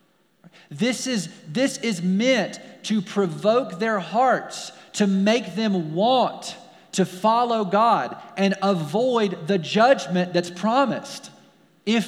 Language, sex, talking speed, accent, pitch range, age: English, male, 115 wpm, American, 165-205 Hz, 40-59